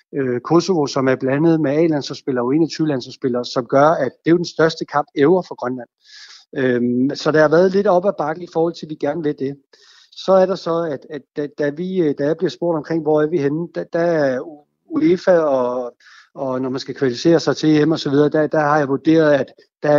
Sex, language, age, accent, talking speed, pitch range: male, Danish, 60-79, native, 225 wpm, 130-165 Hz